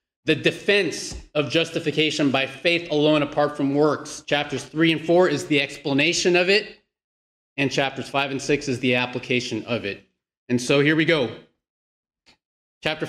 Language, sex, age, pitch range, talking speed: English, male, 30-49, 145-185 Hz, 160 wpm